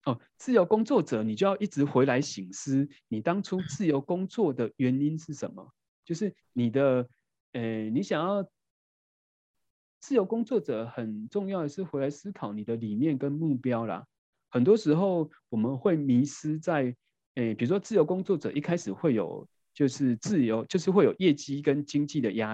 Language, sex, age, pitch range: Chinese, male, 30-49, 120-170 Hz